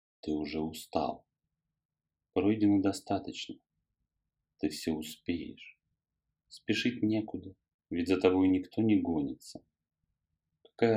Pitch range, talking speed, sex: 80-110 Hz, 95 wpm, male